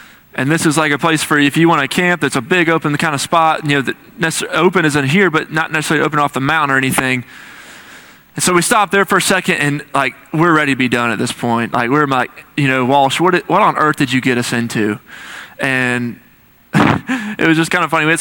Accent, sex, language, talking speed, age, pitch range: American, male, English, 255 wpm, 20-39, 130-165 Hz